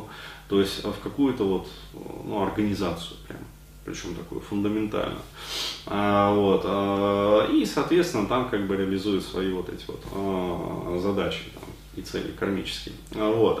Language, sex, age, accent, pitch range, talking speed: Russian, male, 30-49, native, 100-125 Hz, 120 wpm